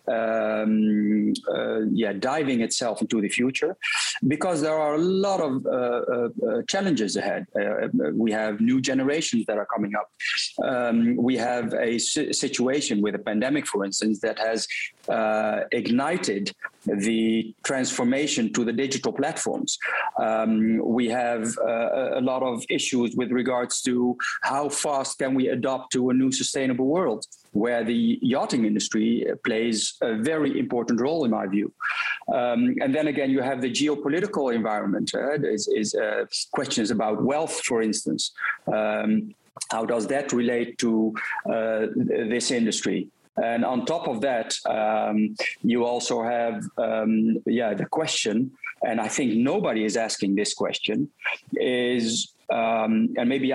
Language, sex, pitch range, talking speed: English, male, 110-140 Hz, 150 wpm